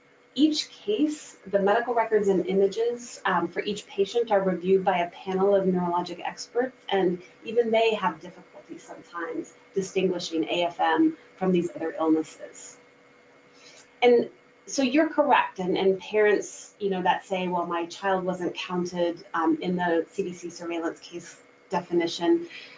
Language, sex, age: English, female, 30-49